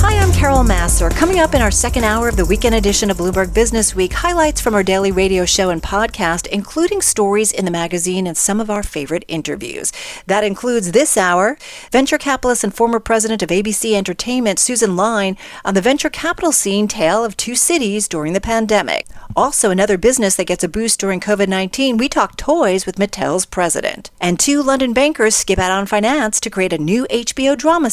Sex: female